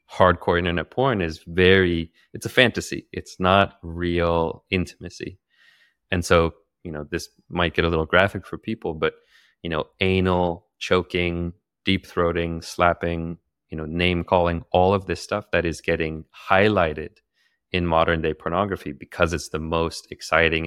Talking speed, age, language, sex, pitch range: 155 wpm, 30-49, English, male, 80-95 Hz